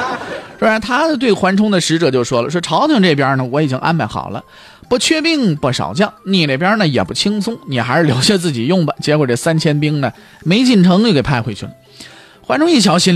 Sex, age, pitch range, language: male, 20-39, 150-240 Hz, Chinese